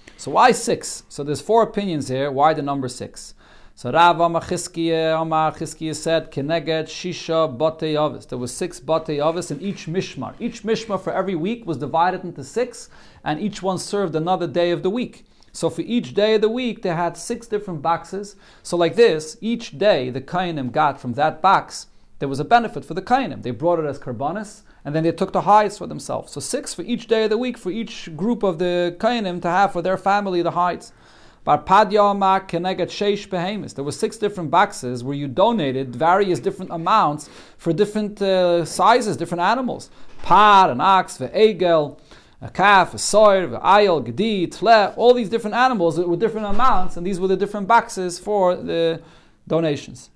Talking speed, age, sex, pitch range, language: 190 wpm, 40-59, male, 160-205 Hz, English